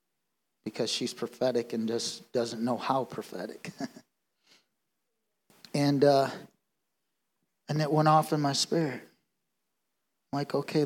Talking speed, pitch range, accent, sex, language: 115 wpm, 120-150 Hz, American, male, English